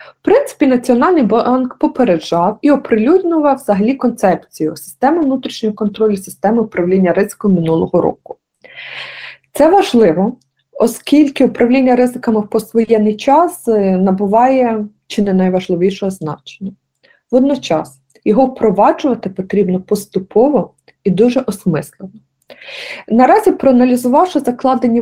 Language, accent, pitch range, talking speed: Ukrainian, native, 195-265 Hz, 100 wpm